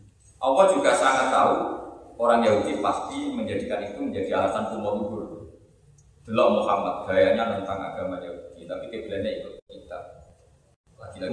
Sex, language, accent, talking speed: male, Indonesian, native, 125 wpm